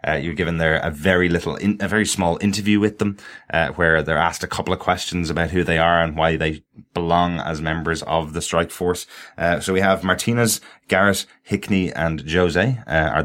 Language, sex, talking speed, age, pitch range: English, male, 215 wpm, 20-39, 80-95 Hz